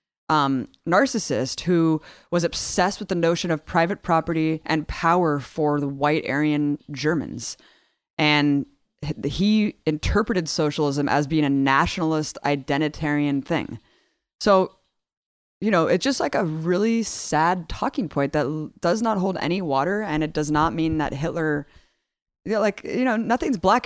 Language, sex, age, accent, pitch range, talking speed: English, female, 20-39, American, 145-215 Hz, 145 wpm